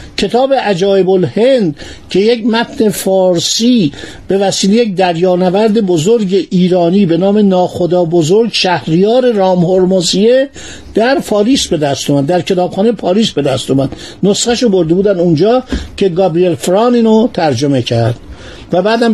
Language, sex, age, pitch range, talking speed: Persian, male, 50-69, 175-220 Hz, 130 wpm